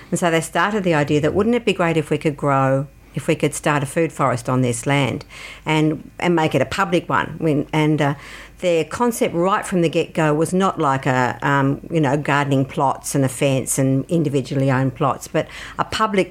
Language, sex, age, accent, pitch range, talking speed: English, female, 50-69, Australian, 150-180 Hz, 225 wpm